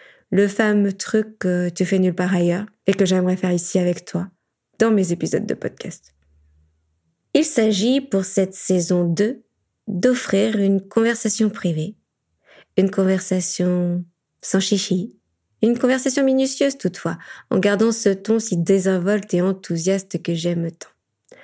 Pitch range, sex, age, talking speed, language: 180-225 Hz, female, 20-39, 140 wpm, French